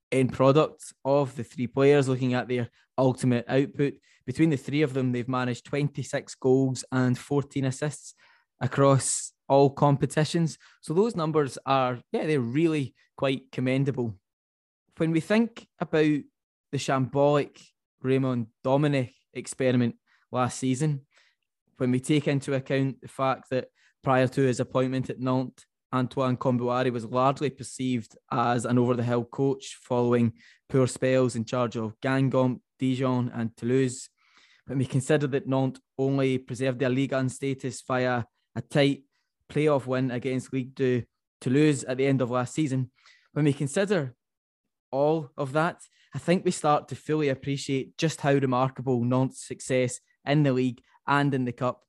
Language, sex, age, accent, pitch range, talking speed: English, male, 20-39, British, 125-140 Hz, 150 wpm